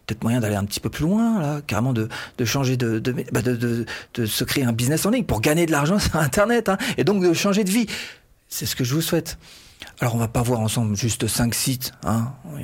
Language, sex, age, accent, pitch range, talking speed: French, male, 40-59, French, 115-175 Hz, 255 wpm